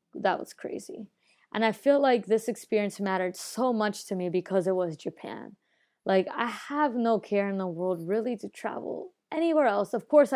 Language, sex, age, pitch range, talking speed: English, female, 20-39, 180-225 Hz, 190 wpm